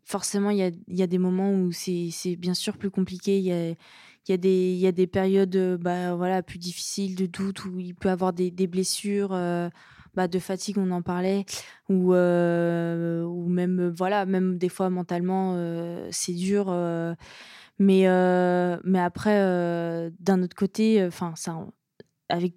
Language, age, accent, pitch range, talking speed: French, 20-39, French, 175-200 Hz, 180 wpm